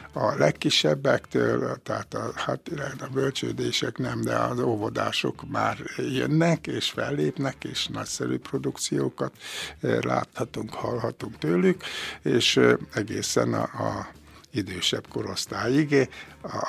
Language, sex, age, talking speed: Hungarian, male, 60-79, 100 wpm